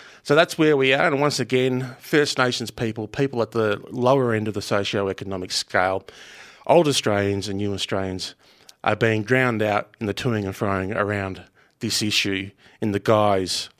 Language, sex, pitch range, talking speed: English, male, 100-120 Hz, 175 wpm